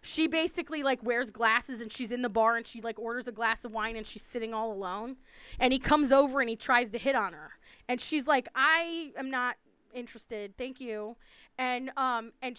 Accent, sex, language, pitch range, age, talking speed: American, female, English, 230-290 Hz, 20-39, 220 wpm